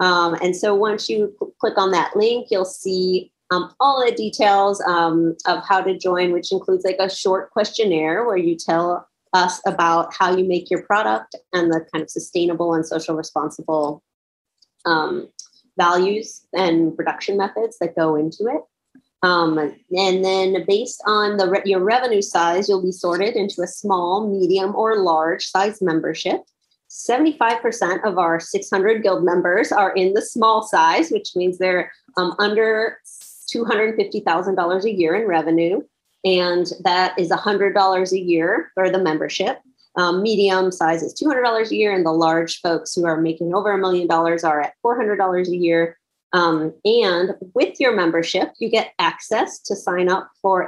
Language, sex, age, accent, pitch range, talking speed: English, female, 30-49, American, 170-205 Hz, 165 wpm